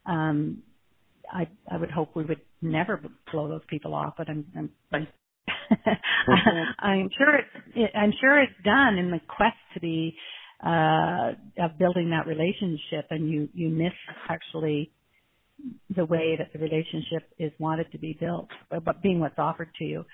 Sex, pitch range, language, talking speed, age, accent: female, 160-190 Hz, English, 165 wpm, 50-69, American